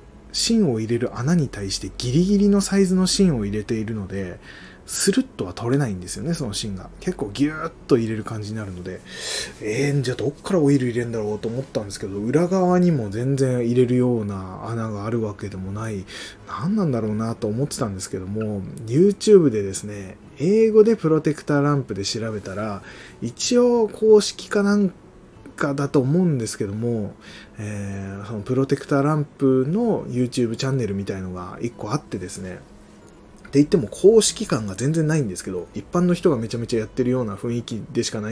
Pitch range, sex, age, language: 105-150 Hz, male, 20-39, Japanese